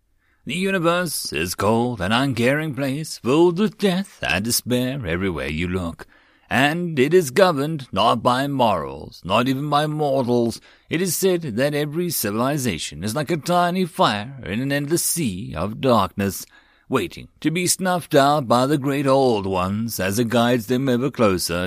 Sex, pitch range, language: male, 110-150 Hz, English